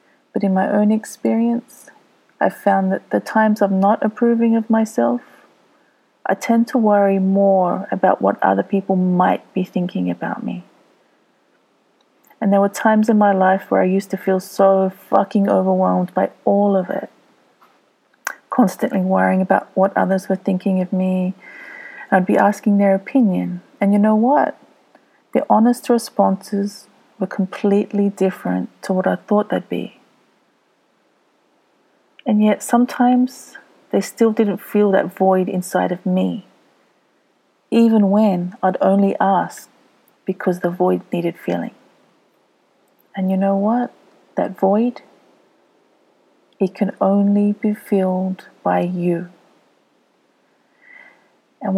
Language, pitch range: English, 190-220 Hz